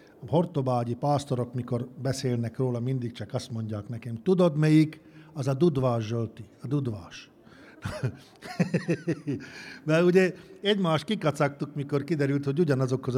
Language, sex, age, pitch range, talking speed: Hungarian, male, 50-69, 125-165 Hz, 125 wpm